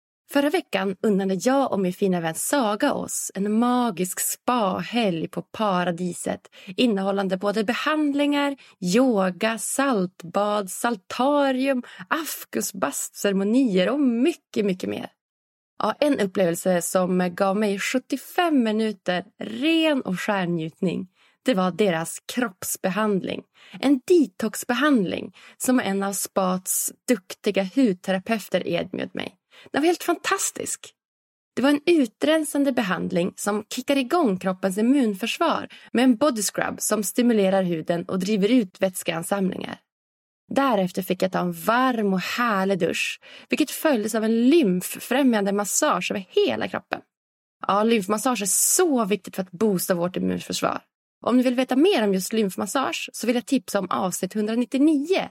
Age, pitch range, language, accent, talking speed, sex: 30-49, 190-260 Hz, English, Swedish, 130 wpm, female